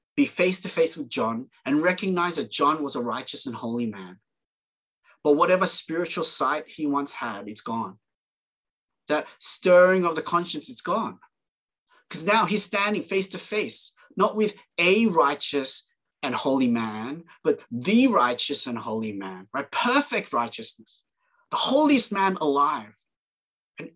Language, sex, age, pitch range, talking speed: English, male, 30-49, 130-215 Hz, 140 wpm